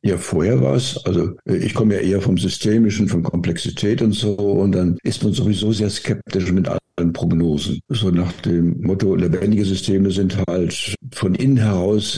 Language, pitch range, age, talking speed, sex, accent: German, 95-110 Hz, 60-79, 170 wpm, male, German